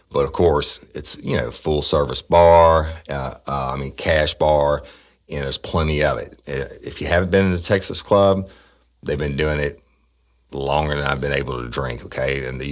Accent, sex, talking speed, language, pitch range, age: American, male, 200 wpm, English, 70-80 Hz, 40-59